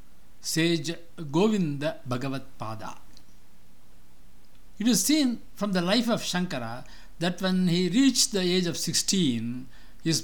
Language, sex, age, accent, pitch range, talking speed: English, male, 60-79, Indian, 120-185 Hz, 125 wpm